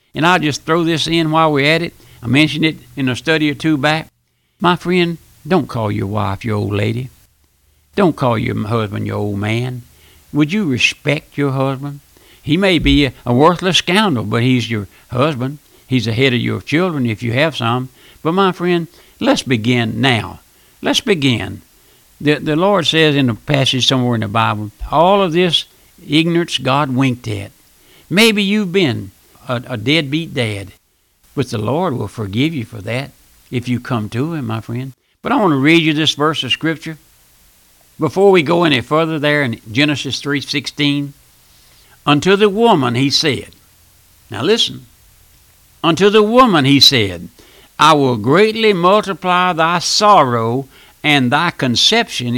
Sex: male